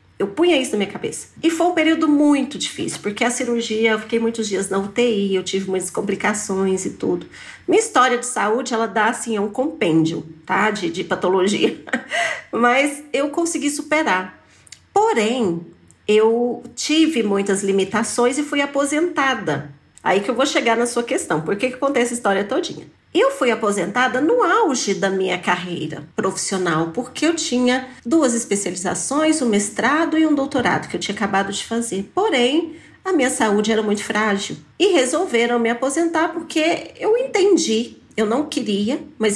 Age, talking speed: 40-59, 170 wpm